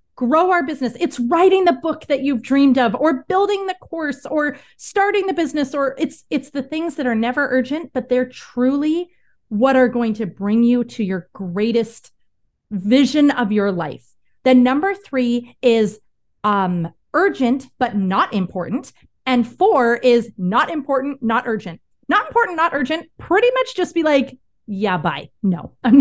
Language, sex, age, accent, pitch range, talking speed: English, female, 30-49, American, 225-285 Hz, 170 wpm